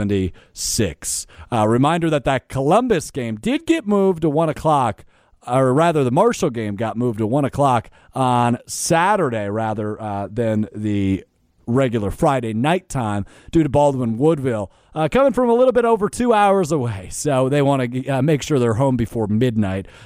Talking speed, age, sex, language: 170 wpm, 30-49, male, English